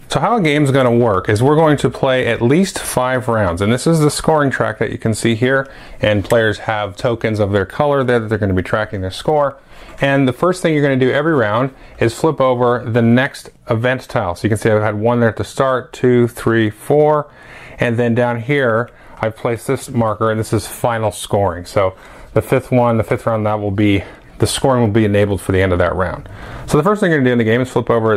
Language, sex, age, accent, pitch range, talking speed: English, male, 30-49, American, 110-135 Hz, 250 wpm